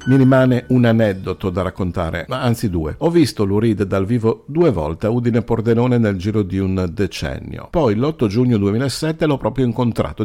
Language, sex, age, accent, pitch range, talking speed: Italian, male, 50-69, native, 95-120 Hz, 180 wpm